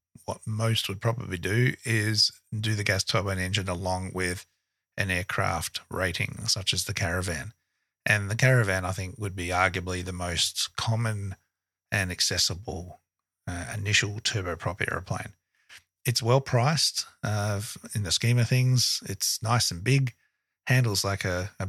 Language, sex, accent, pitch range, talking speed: English, male, Australian, 95-115 Hz, 145 wpm